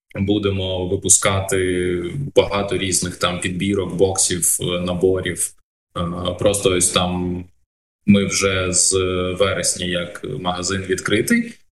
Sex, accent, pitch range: male, native, 90-105 Hz